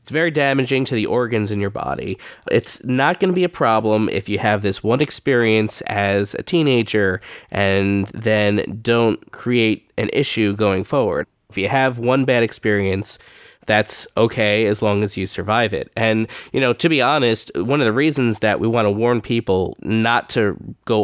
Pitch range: 105-125 Hz